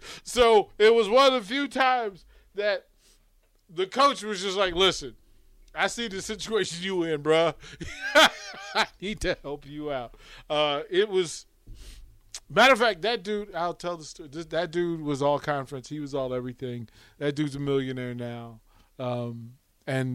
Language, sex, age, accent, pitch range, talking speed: English, male, 40-59, American, 125-210 Hz, 165 wpm